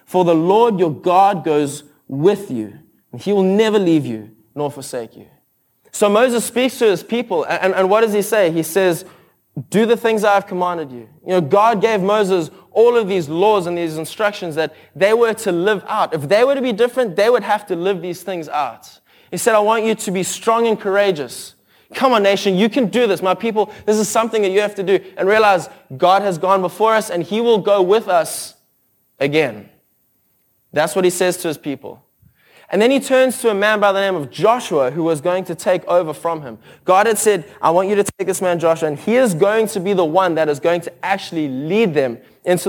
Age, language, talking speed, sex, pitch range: 20-39, English, 230 wpm, male, 165-210 Hz